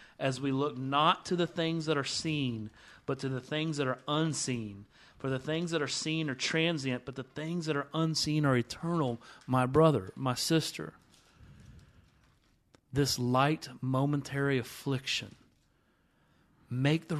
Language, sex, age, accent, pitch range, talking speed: English, male, 40-59, American, 130-160 Hz, 150 wpm